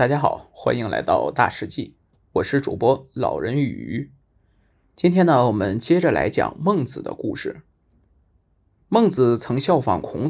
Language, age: Chinese, 20-39